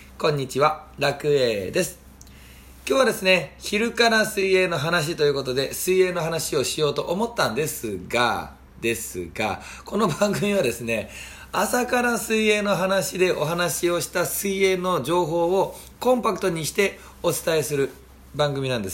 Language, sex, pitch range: Japanese, male, 100-165 Hz